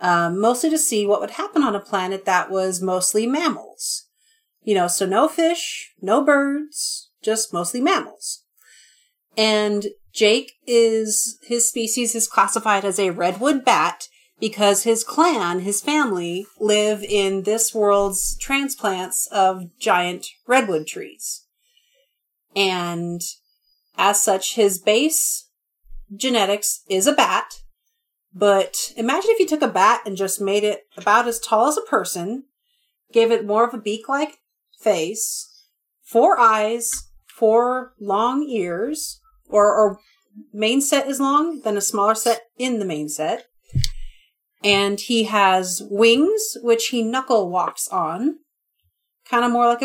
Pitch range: 200-275 Hz